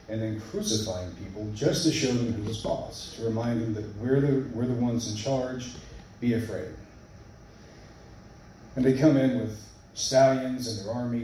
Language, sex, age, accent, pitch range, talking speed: English, male, 30-49, American, 105-125 Hz, 175 wpm